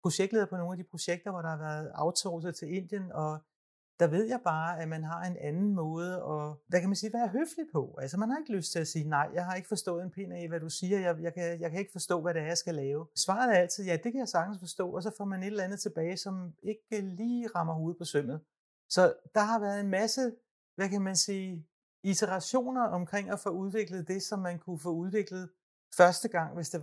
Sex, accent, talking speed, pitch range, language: male, native, 255 wpm, 170-200 Hz, Danish